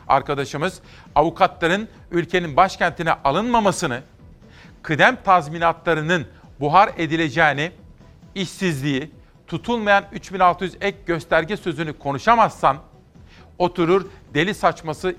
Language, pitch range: Turkish, 145-180 Hz